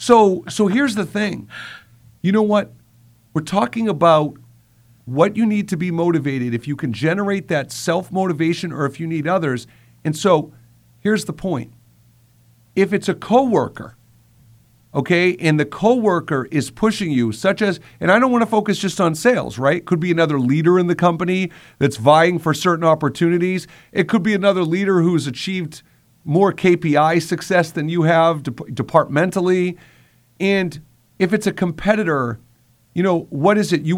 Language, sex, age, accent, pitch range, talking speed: English, male, 50-69, American, 140-190 Hz, 165 wpm